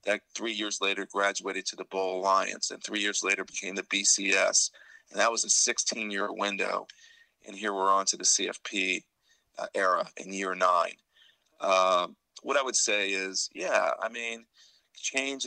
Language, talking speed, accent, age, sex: English, 170 wpm, American, 40-59, male